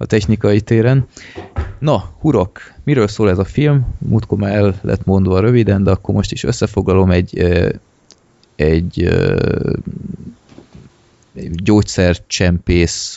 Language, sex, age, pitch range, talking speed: Hungarian, male, 20-39, 85-105 Hz, 115 wpm